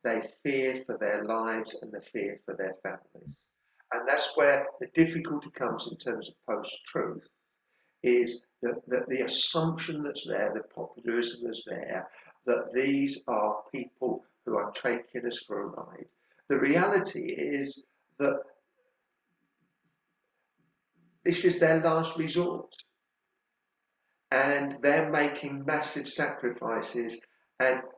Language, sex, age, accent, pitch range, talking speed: English, male, 50-69, British, 125-150 Hz, 125 wpm